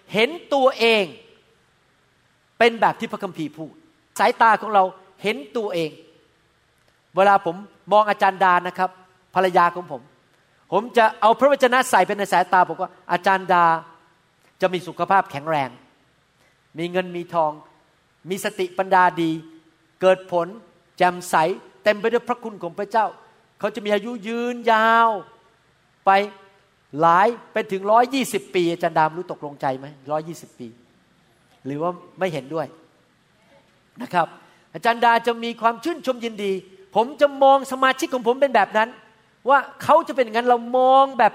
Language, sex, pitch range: Thai, male, 175-235 Hz